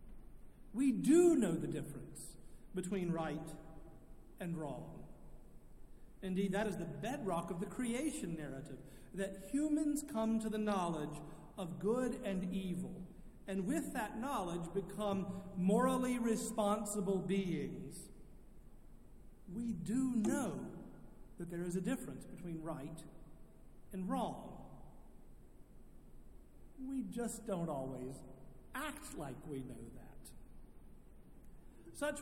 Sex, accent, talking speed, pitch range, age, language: male, American, 105 wpm, 160-205 Hz, 50-69, English